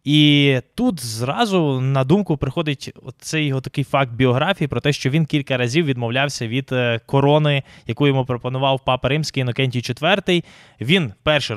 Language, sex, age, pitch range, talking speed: Ukrainian, male, 20-39, 130-165 Hz, 150 wpm